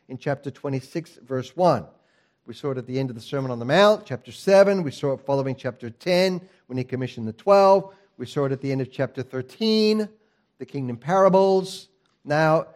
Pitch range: 140-205 Hz